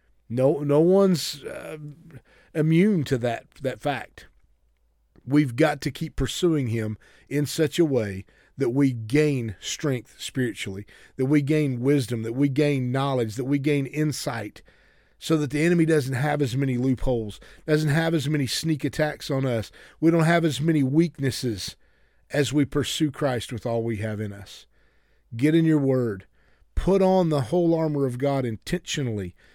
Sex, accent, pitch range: male, American, 120-160 Hz